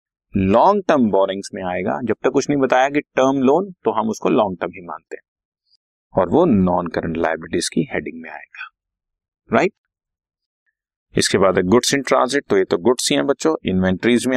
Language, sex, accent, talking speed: Hindi, male, native, 165 wpm